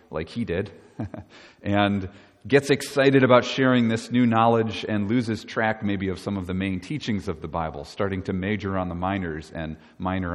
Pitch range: 95-120 Hz